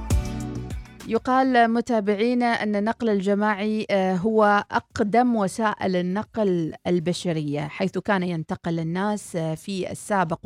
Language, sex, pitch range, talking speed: Arabic, female, 165-220 Hz, 90 wpm